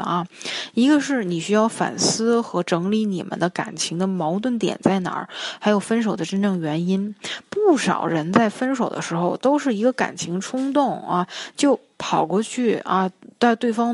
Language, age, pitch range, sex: Chinese, 20-39, 180-230 Hz, female